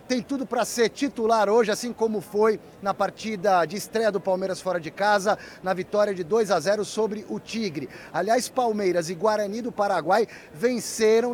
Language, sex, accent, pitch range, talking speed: Portuguese, male, Brazilian, 195-235 Hz, 180 wpm